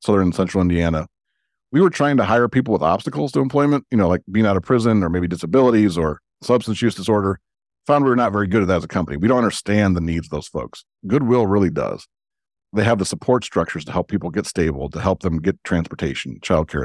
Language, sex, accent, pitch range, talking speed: English, male, American, 90-125 Hz, 235 wpm